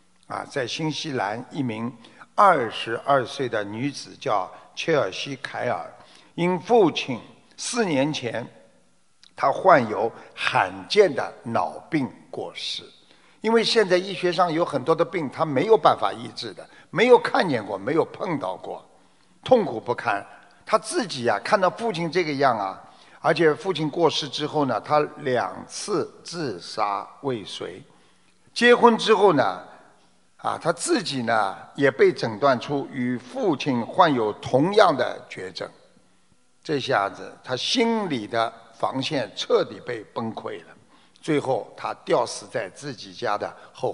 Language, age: Chinese, 50-69